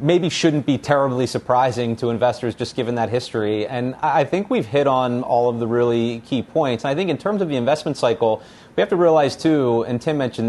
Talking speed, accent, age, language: 230 wpm, American, 30-49, English